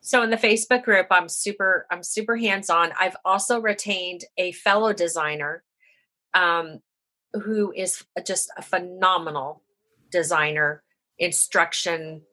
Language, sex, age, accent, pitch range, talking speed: English, female, 40-59, American, 175-210 Hz, 115 wpm